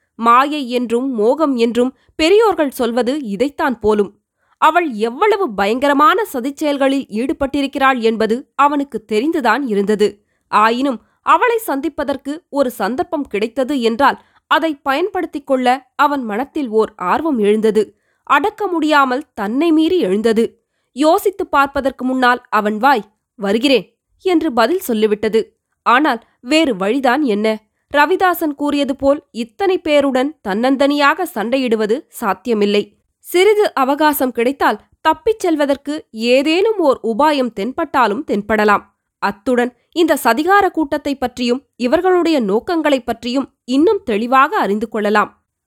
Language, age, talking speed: Tamil, 20-39, 105 wpm